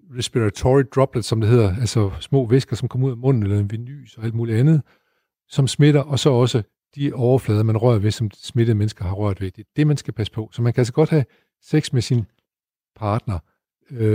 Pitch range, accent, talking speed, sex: 110-135 Hz, native, 225 wpm, male